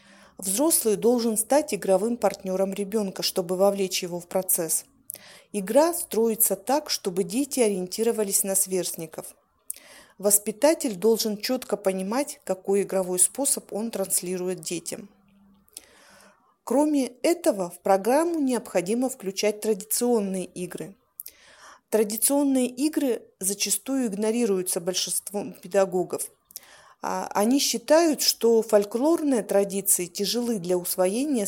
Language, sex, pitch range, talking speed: Russian, female, 190-235 Hz, 95 wpm